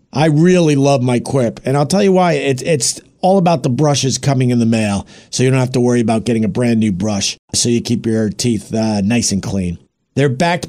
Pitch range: 140-195 Hz